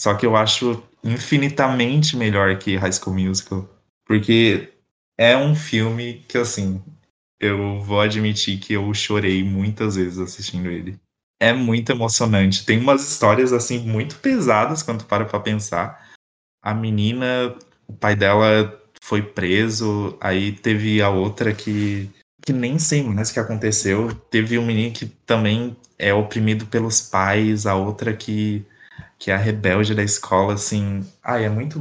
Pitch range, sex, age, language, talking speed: 100-115 Hz, male, 20-39, Portuguese, 155 wpm